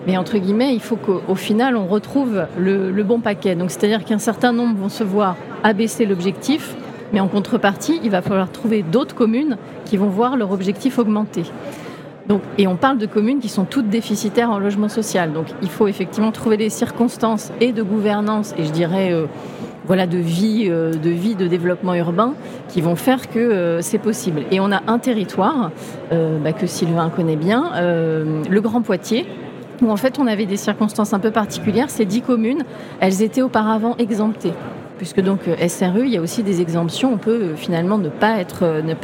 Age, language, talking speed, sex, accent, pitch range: 30-49, French, 200 wpm, female, French, 180-230 Hz